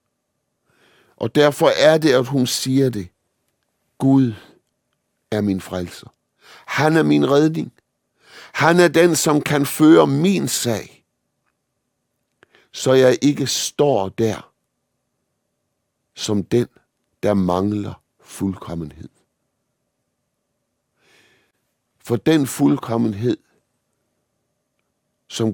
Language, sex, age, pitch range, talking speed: Danish, male, 60-79, 100-135 Hz, 90 wpm